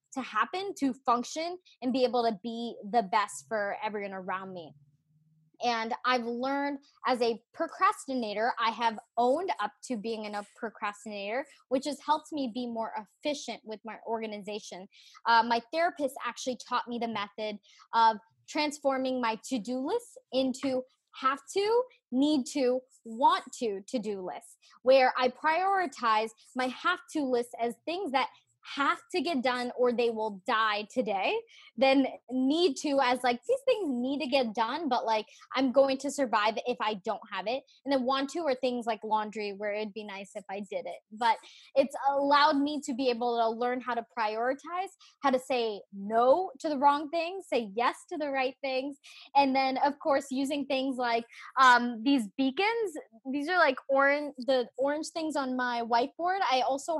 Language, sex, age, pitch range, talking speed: English, female, 20-39, 225-285 Hz, 175 wpm